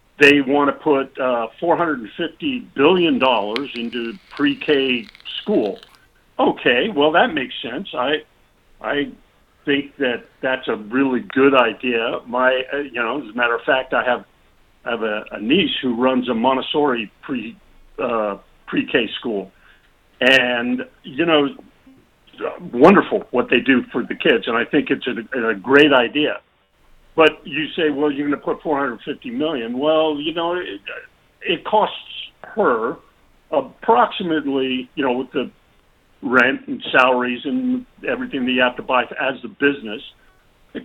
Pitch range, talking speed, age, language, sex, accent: 125-155 Hz, 150 wpm, 50-69, English, male, American